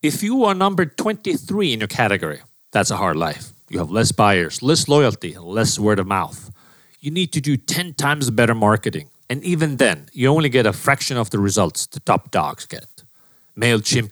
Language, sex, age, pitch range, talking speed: English, male, 40-59, 105-150 Hz, 195 wpm